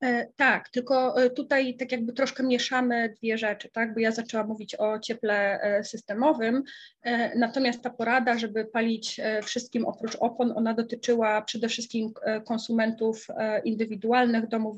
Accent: native